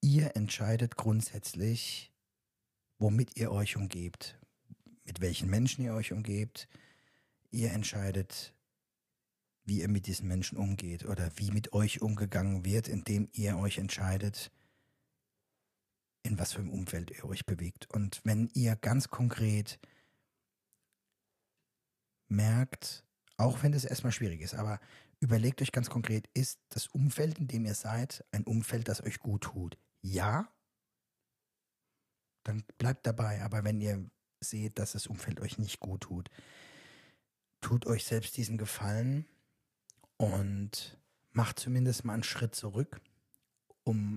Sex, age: male, 50-69